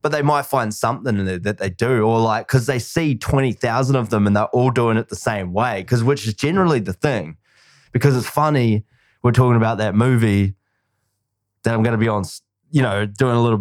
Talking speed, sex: 225 wpm, male